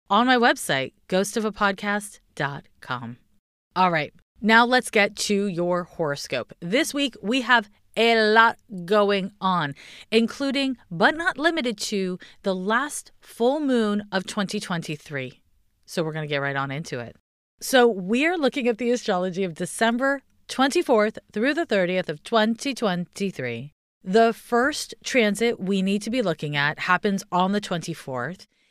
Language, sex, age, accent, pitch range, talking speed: English, female, 30-49, American, 180-245 Hz, 140 wpm